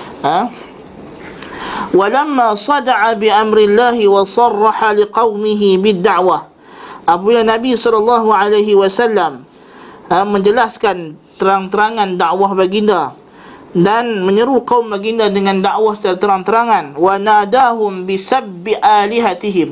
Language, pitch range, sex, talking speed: Malay, 195-235 Hz, male, 95 wpm